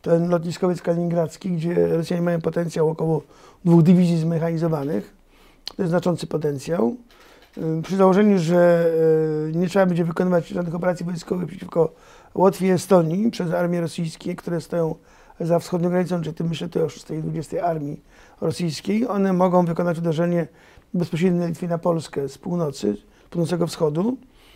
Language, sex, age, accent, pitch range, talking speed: Polish, male, 50-69, native, 160-185 Hz, 150 wpm